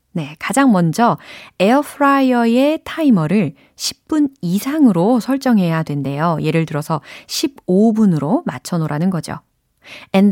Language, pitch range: Korean, 165-250 Hz